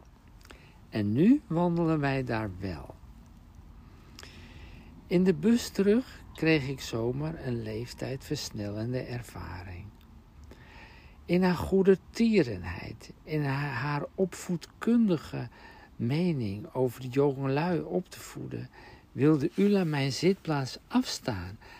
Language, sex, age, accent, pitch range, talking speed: Dutch, male, 60-79, Dutch, 105-155 Hz, 100 wpm